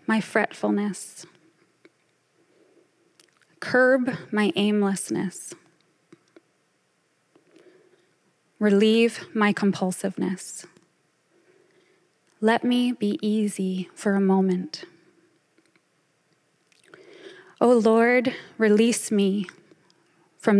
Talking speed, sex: 60 wpm, female